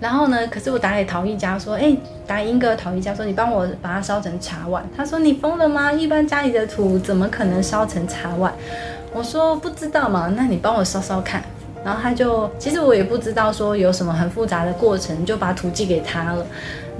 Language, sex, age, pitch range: Chinese, female, 20-39, 180-230 Hz